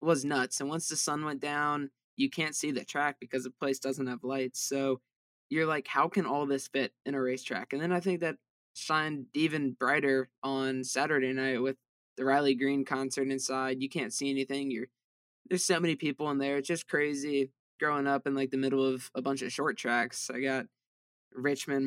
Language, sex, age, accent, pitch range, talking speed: English, male, 20-39, American, 130-145 Hz, 210 wpm